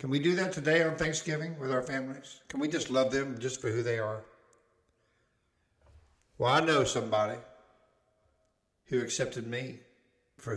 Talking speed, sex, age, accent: 160 wpm, male, 60-79, American